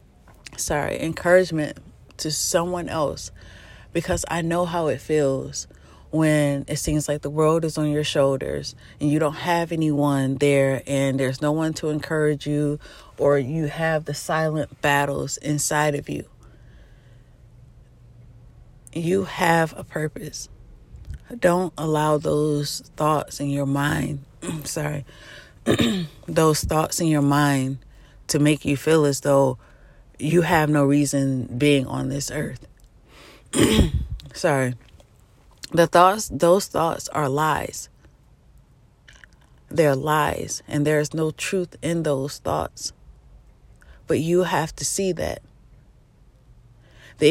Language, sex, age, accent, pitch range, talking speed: English, female, 30-49, American, 135-160 Hz, 125 wpm